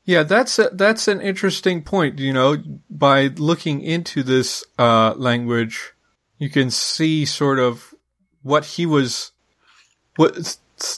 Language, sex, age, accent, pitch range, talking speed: English, male, 40-59, American, 120-155 Hz, 130 wpm